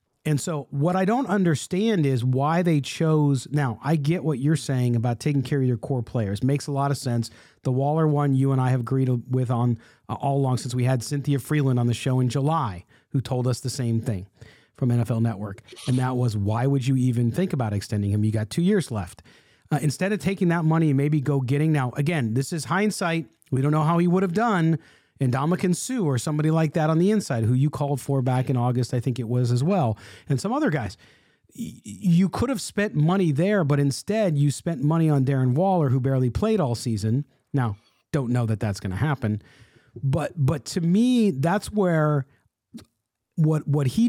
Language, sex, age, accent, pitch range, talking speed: English, male, 40-59, American, 125-160 Hz, 220 wpm